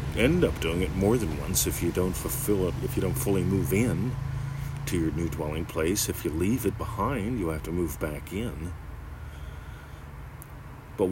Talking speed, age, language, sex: 190 wpm, 40-59, English, male